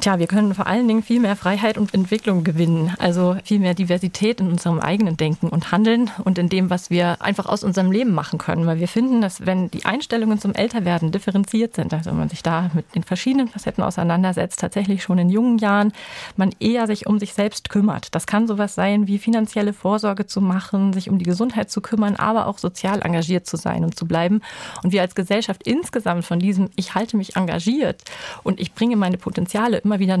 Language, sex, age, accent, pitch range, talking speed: German, female, 30-49, German, 180-215 Hz, 215 wpm